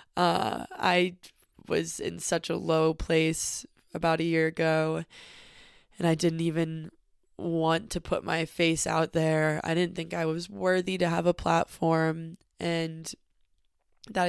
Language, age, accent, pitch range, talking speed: English, 20-39, American, 170-195 Hz, 145 wpm